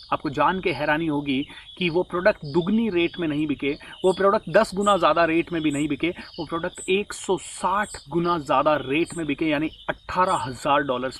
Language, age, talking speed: Hindi, 30-49, 180 wpm